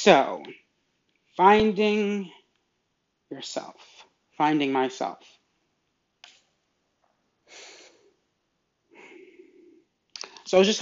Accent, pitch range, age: American, 135-180 Hz, 30-49